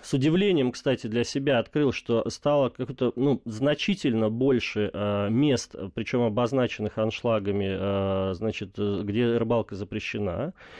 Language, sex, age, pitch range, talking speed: Russian, male, 30-49, 100-125 Hz, 120 wpm